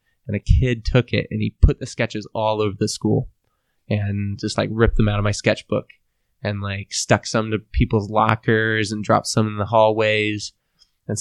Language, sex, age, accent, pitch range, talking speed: English, male, 20-39, American, 105-125 Hz, 200 wpm